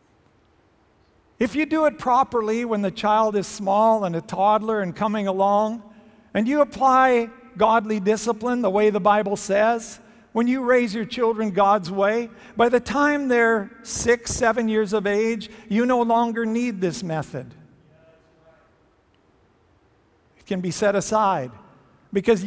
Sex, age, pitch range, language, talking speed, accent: male, 50-69, 205-235 Hz, English, 145 wpm, American